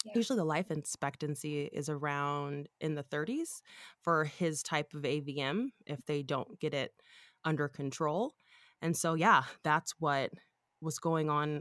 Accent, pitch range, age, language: American, 145-180 Hz, 20-39, English